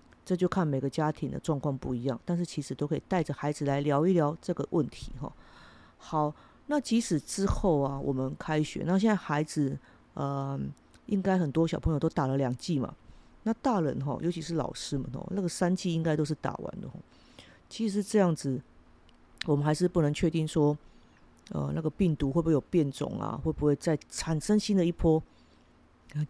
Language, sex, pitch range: Chinese, female, 140-170 Hz